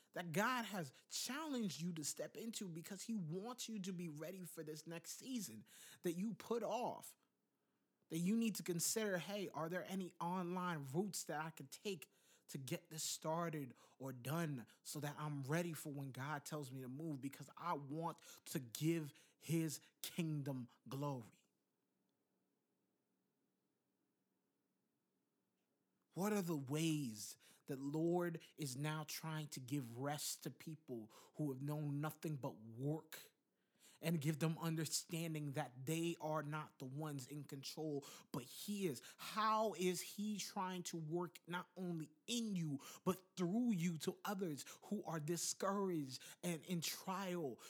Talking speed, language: 150 wpm, English